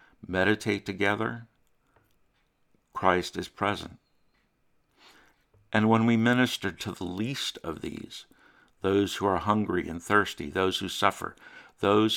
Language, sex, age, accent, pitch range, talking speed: English, male, 60-79, American, 90-105 Hz, 120 wpm